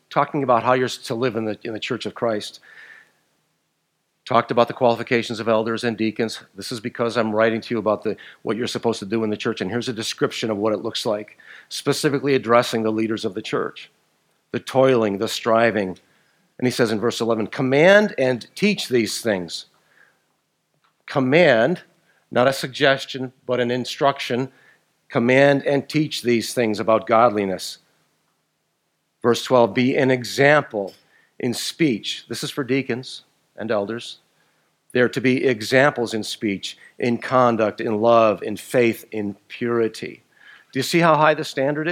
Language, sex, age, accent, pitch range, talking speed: English, male, 50-69, American, 110-135 Hz, 170 wpm